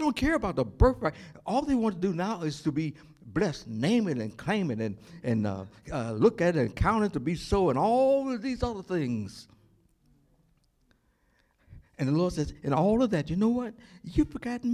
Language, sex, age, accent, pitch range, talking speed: English, male, 60-79, American, 120-200 Hz, 210 wpm